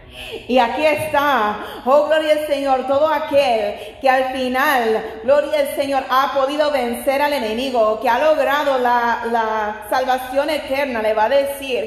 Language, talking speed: Spanish, 155 wpm